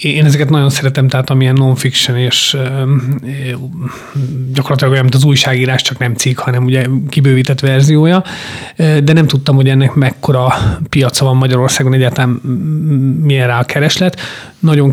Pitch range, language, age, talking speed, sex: 130-150 Hz, Hungarian, 30-49, 140 wpm, male